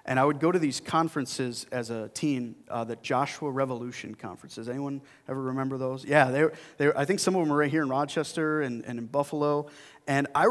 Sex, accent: male, American